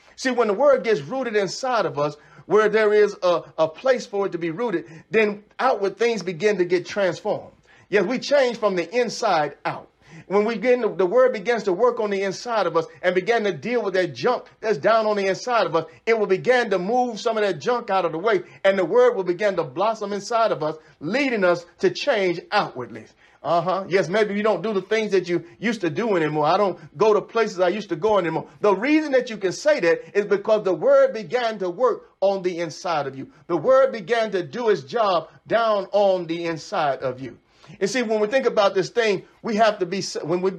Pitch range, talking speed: 180-230 Hz, 235 wpm